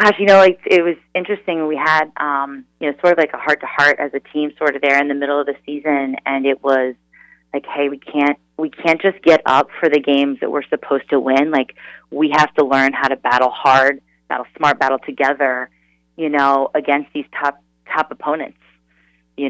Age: 30-49